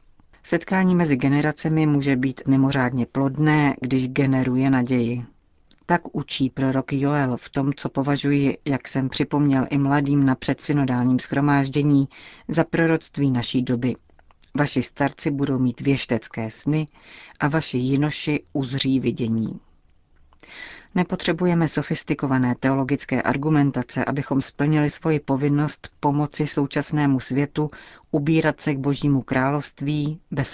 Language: Czech